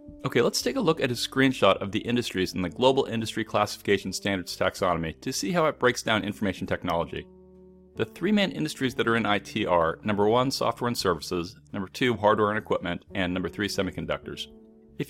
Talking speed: 200 wpm